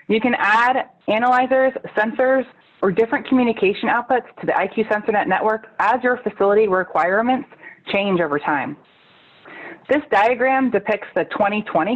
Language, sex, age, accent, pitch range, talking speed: English, female, 30-49, American, 180-250 Hz, 130 wpm